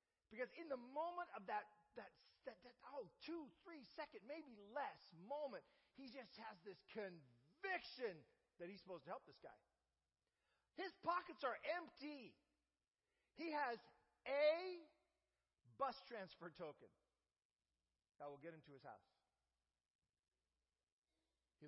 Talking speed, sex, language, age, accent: 125 wpm, male, English, 50-69, American